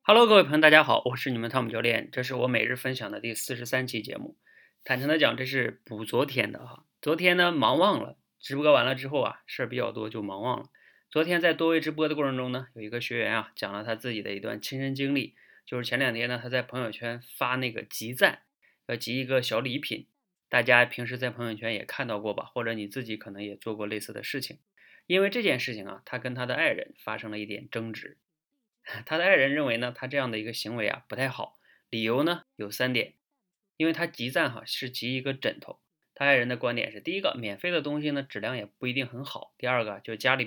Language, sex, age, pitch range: Chinese, male, 30-49, 115-155 Hz